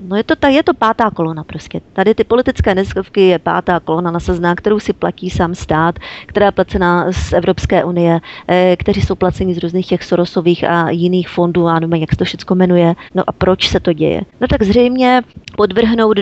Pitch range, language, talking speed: 175-210 Hz, Czech, 210 wpm